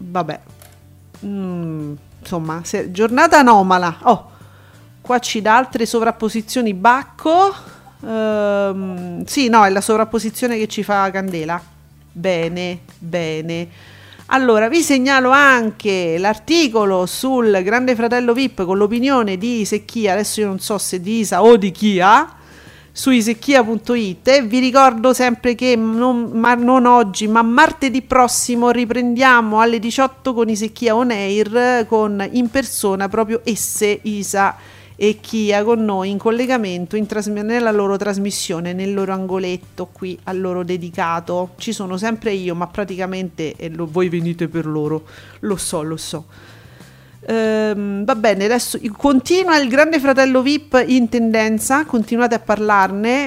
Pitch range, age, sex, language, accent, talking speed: 185-240 Hz, 40-59, female, Italian, native, 135 wpm